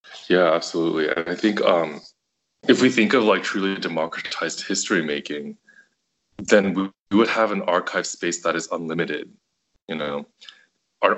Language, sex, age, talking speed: English, male, 20-39, 150 wpm